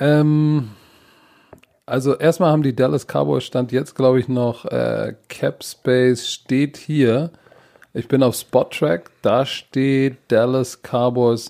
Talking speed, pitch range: 125 wpm, 125-150 Hz